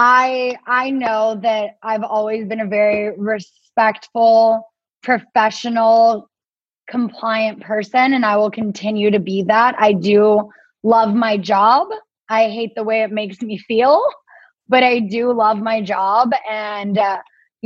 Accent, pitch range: American, 210-245 Hz